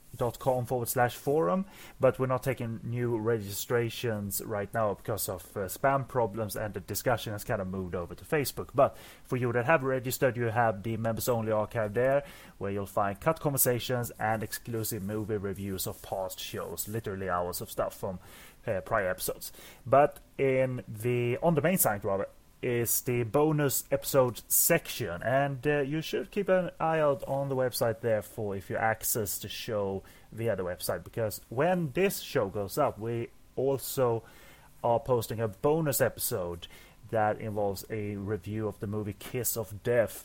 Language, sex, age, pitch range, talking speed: English, male, 30-49, 105-135 Hz, 175 wpm